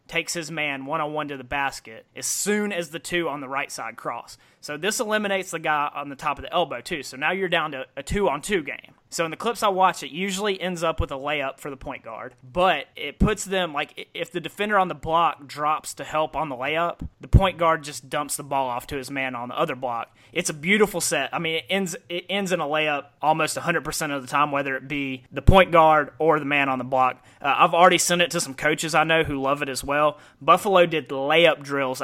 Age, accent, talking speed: 30-49, American, 255 wpm